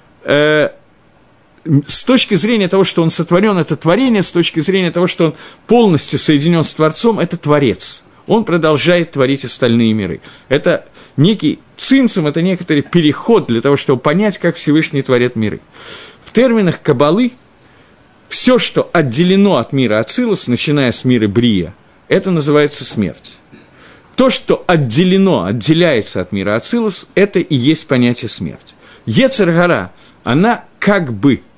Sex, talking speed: male, 135 wpm